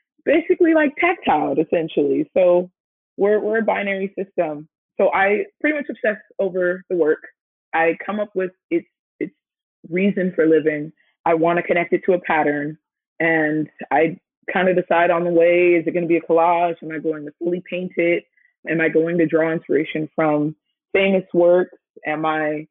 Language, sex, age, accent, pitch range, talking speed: English, female, 20-39, American, 160-195 Hz, 180 wpm